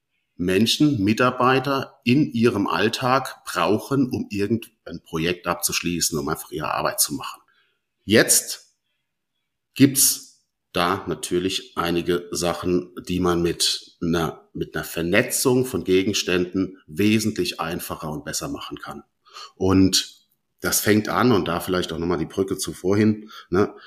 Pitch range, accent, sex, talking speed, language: 90-120 Hz, German, male, 130 wpm, German